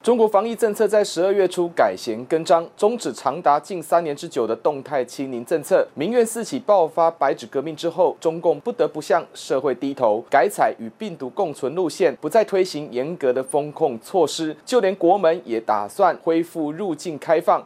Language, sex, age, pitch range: Chinese, male, 30-49, 140-195 Hz